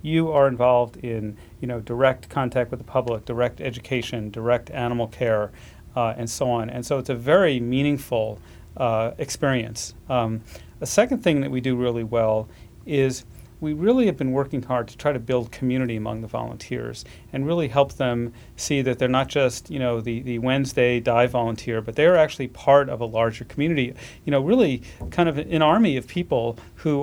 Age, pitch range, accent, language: 40-59, 120-145 Hz, American, English